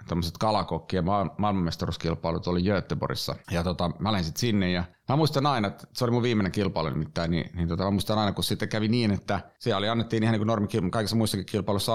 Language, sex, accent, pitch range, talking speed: Finnish, male, native, 90-110 Hz, 205 wpm